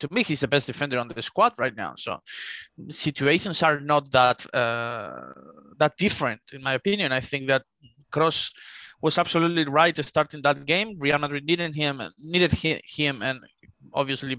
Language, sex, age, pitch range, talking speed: English, male, 20-39, 125-150 Hz, 175 wpm